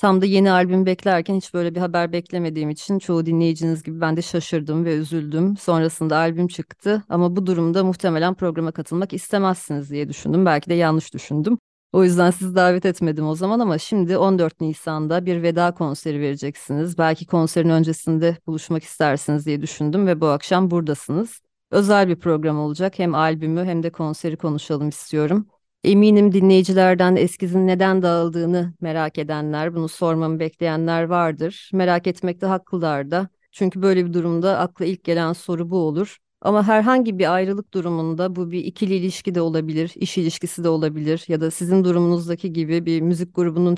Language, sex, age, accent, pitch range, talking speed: Turkish, female, 30-49, native, 165-185 Hz, 165 wpm